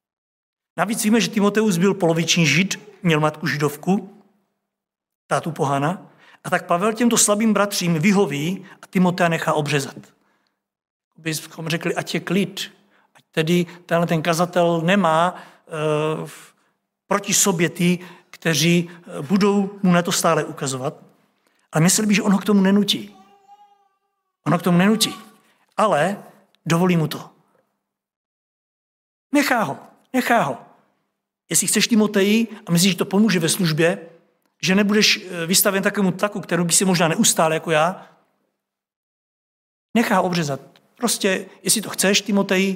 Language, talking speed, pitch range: Czech, 135 wpm, 170-210 Hz